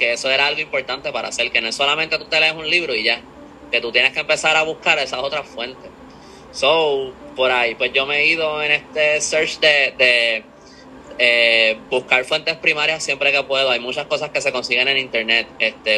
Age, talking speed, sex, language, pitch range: 20-39, 215 wpm, male, Spanish, 120-150 Hz